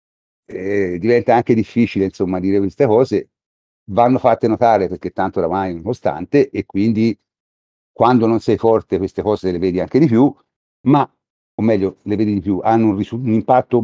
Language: Italian